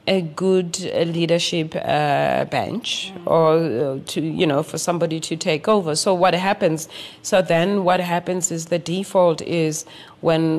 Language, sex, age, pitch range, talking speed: English, female, 30-49, 160-195 Hz, 155 wpm